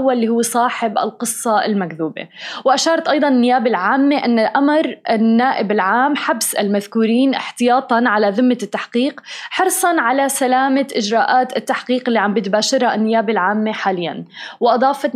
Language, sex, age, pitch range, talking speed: Arabic, female, 20-39, 220-270 Hz, 125 wpm